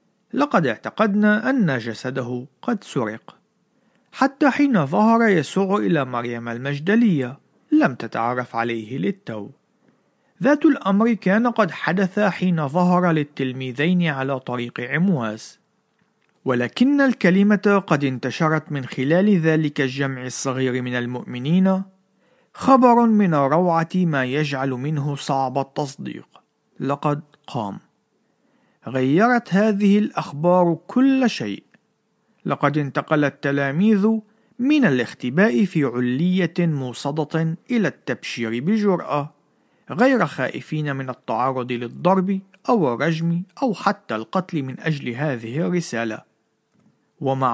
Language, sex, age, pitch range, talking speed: Arabic, male, 50-69, 135-210 Hz, 100 wpm